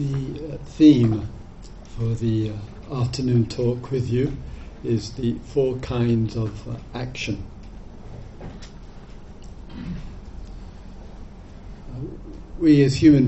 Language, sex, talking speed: English, male, 90 wpm